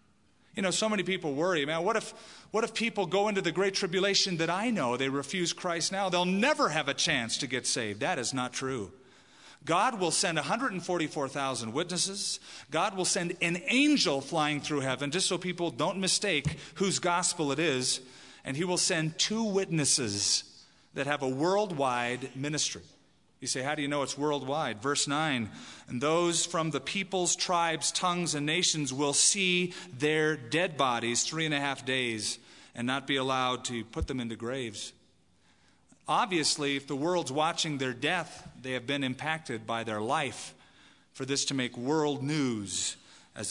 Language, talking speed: English, 175 wpm